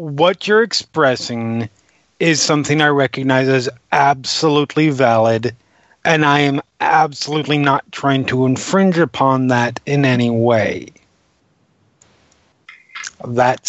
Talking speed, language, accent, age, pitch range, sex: 105 wpm, English, American, 30-49, 120-160 Hz, male